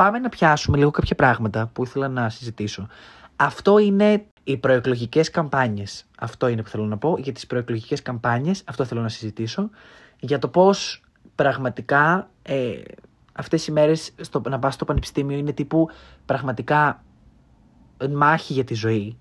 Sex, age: male, 20-39